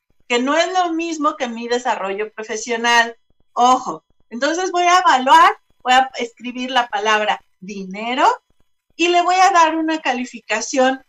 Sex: female